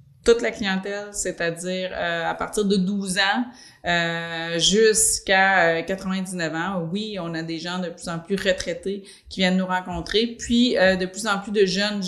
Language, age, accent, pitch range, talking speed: French, 30-49, Canadian, 170-200 Hz, 185 wpm